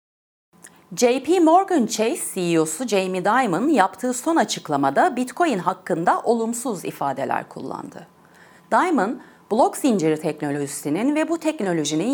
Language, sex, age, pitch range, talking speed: Turkish, female, 30-49, 160-260 Hz, 105 wpm